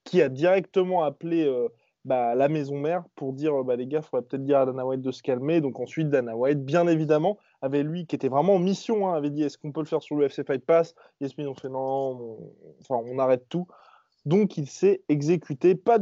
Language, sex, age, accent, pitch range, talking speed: French, male, 20-39, French, 145-190 Hz, 235 wpm